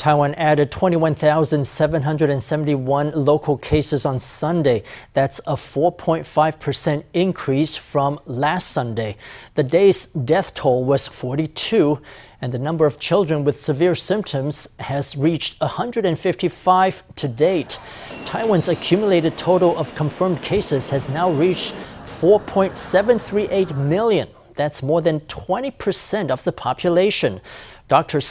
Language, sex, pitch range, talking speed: English, male, 140-175 Hz, 115 wpm